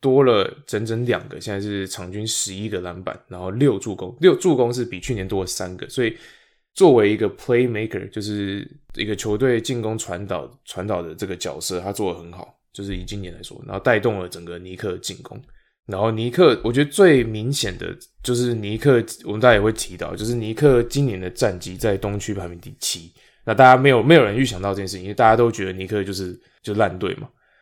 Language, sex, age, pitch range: English, male, 20-39, 95-125 Hz